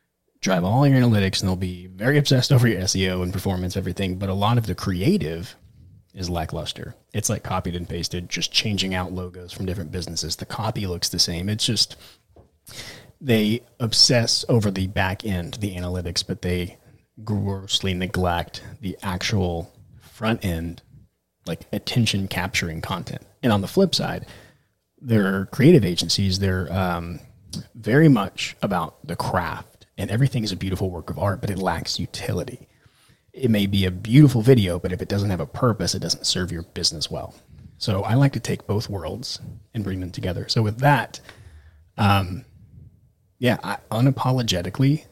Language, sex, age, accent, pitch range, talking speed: English, male, 30-49, American, 90-115 Hz, 170 wpm